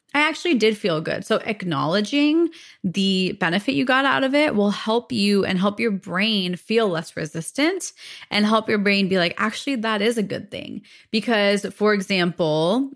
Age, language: 20-39, English